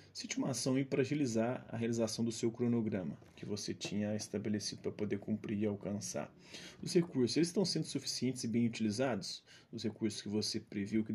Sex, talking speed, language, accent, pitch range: male, 185 wpm, Portuguese, Brazilian, 110-140 Hz